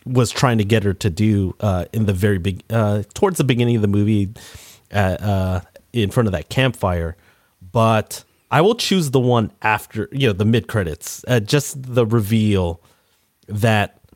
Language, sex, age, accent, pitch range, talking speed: English, male, 30-49, American, 100-130 Hz, 180 wpm